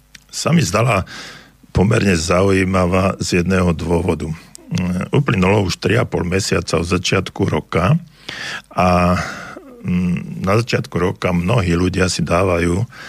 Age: 50-69